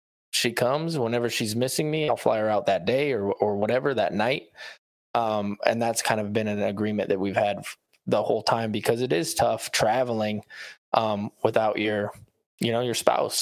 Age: 20-39